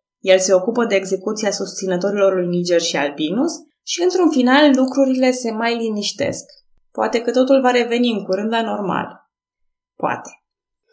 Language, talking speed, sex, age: Romanian, 150 wpm, female, 20-39